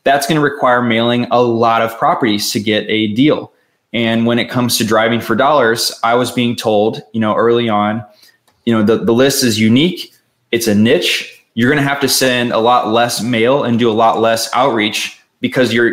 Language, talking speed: English, 215 wpm